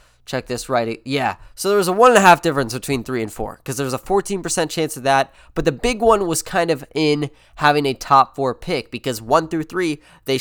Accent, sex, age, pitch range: American, male, 20-39, 130-170 Hz